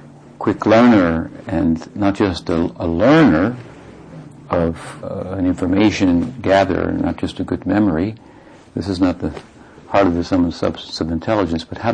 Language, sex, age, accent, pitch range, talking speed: English, male, 60-79, American, 85-95 Hz, 165 wpm